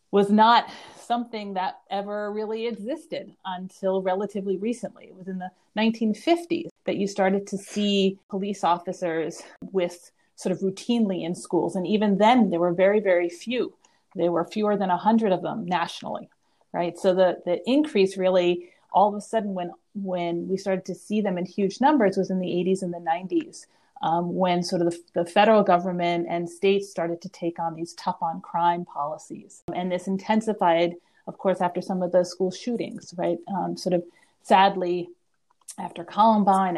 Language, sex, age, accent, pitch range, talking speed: English, female, 30-49, American, 175-205 Hz, 175 wpm